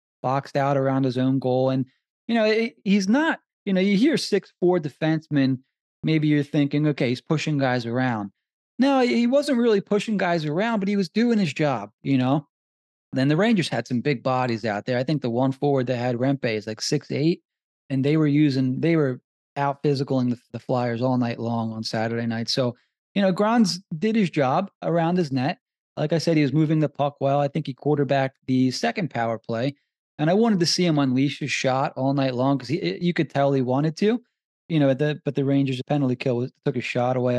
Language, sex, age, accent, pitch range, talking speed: English, male, 20-39, American, 130-170 Hz, 225 wpm